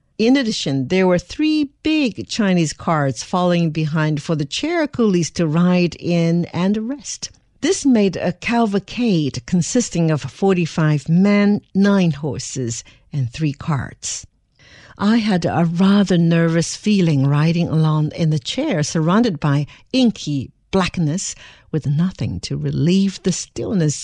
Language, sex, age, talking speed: English, female, 60-79, 130 wpm